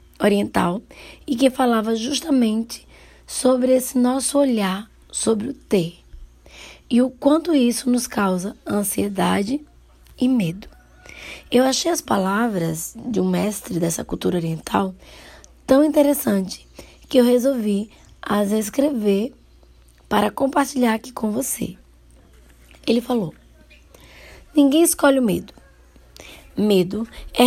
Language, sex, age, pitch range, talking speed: Portuguese, female, 20-39, 190-255 Hz, 110 wpm